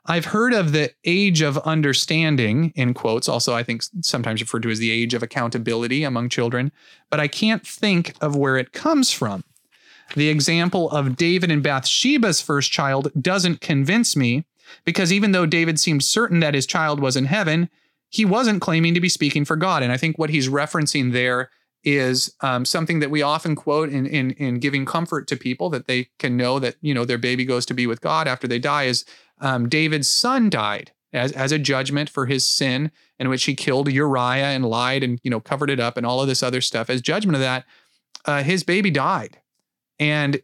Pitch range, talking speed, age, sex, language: 130-165 Hz, 210 wpm, 30-49, male, English